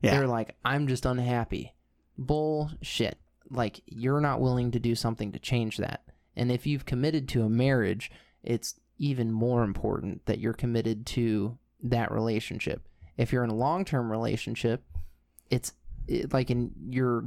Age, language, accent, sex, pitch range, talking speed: 20-39, English, American, male, 110-130 Hz, 145 wpm